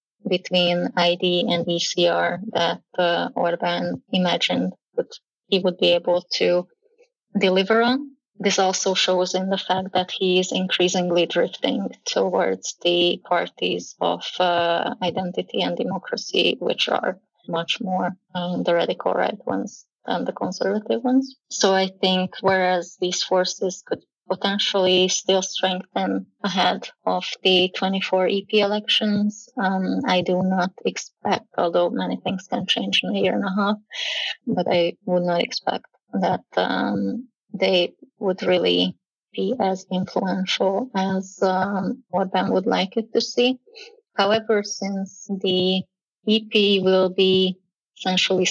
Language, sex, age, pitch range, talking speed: Hungarian, female, 20-39, 180-200 Hz, 135 wpm